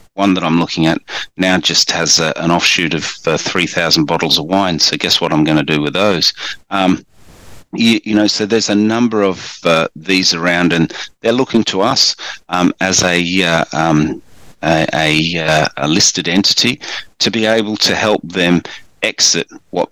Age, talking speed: 40-59, 185 wpm